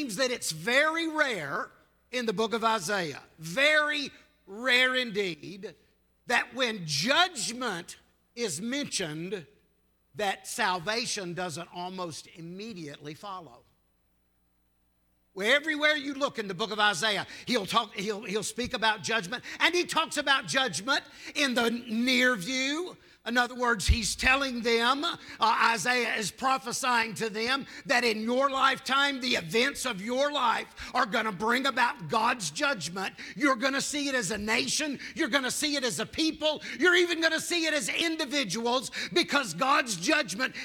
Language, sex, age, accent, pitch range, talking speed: English, male, 50-69, American, 220-290 Hz, 150 wpm